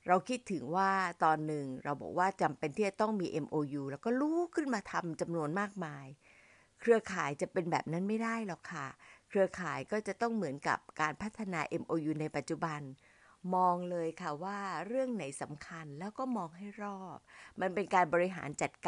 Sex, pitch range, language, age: female, 155-210 Hz, Thai, 60-79